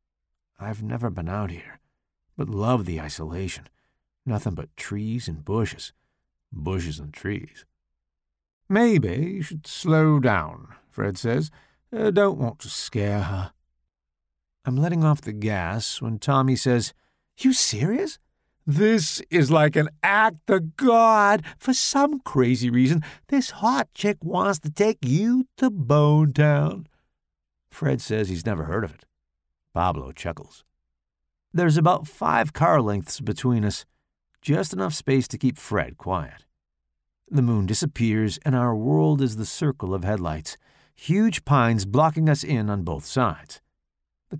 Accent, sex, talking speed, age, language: American, male, 140 wpm, 50-69, English